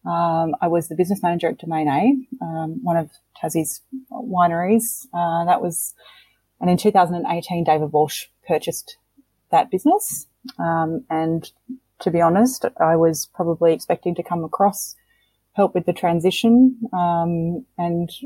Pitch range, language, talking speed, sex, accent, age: 165-200 Hz, English, 140 wpm, female, Australian, 20-39